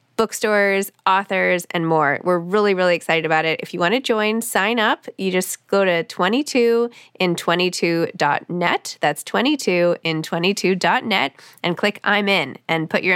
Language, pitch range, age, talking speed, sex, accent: English, 180-235 Hz, 20-39, 135 wpm, female, American